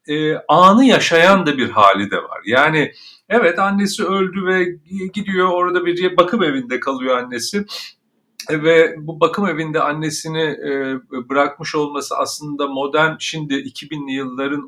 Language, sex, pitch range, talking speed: Turkish, male, 125-185 Hz, 125 wpm